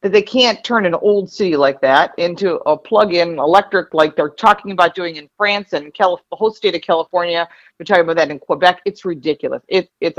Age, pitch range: 50-69, 170-245 Hz